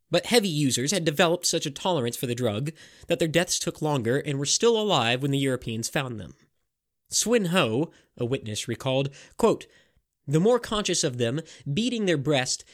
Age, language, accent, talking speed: 20-39, English, American, 180 wpm